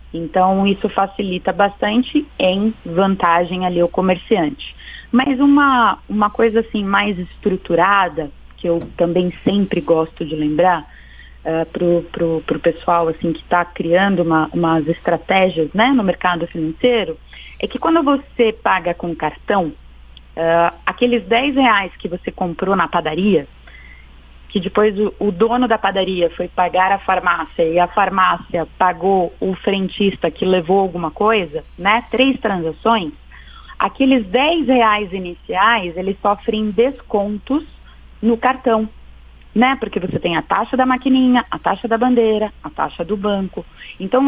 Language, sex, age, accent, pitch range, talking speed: Portuguese, female, 30-49, Brazilian, 175-230 Hz, 140 wpm